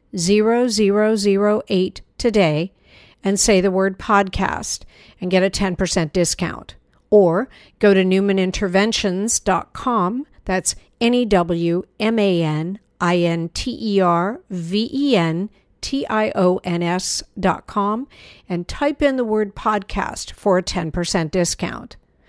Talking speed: 125 wpm